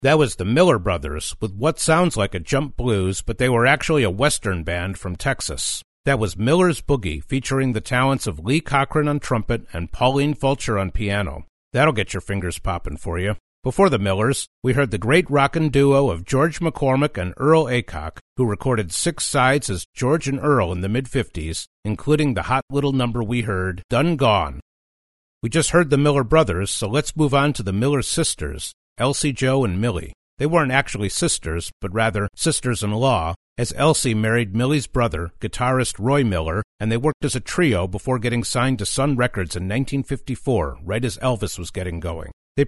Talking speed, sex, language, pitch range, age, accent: 190 wpm, male, English, 95-140 Hz, 50-69, American